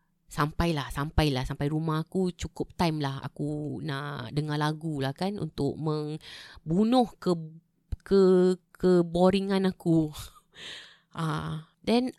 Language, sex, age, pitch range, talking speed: Malay, female, 20-39, 145-190 Hz, 115 wpm